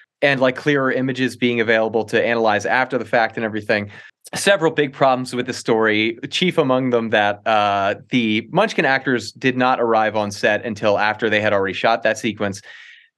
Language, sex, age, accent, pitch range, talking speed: English, male, 30-49, American, 115-155 Hz, 180 wpm